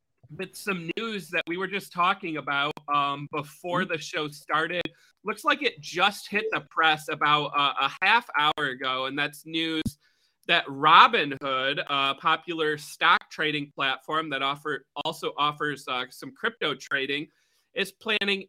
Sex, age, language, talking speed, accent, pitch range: male, 30-49, English, 155 wpm, American, 145-180 Hz